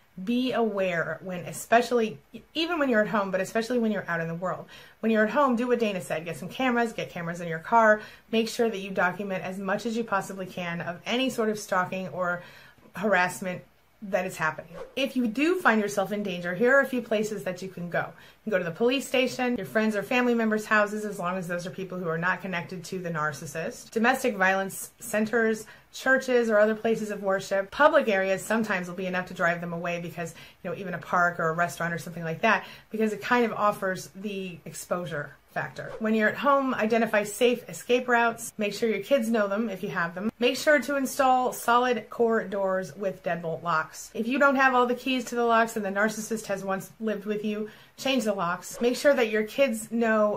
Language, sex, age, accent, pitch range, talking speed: English, female, 30-49, American, 180-230 Hz, 230 wpm